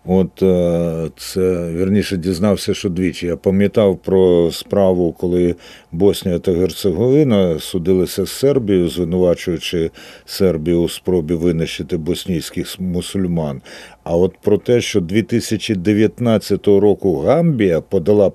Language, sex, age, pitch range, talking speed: Ukrainian, male, 50-69, 85-105 Hz, 110 wpm